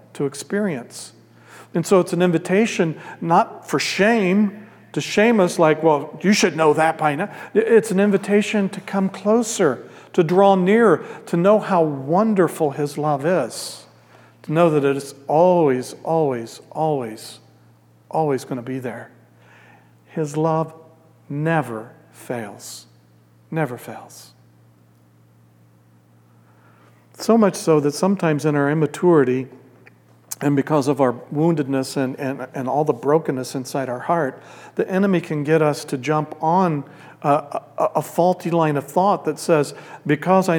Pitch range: 135-185 Hz